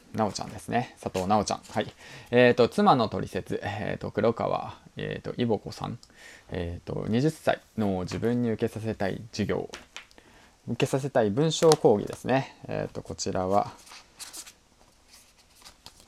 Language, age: Japanese, 20-39